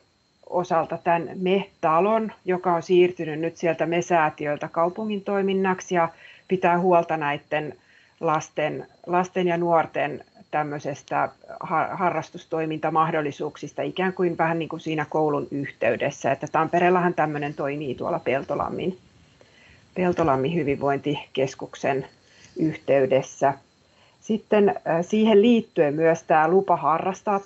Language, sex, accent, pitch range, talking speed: Finnish, female, native, 155-180 Hz, 100 wpm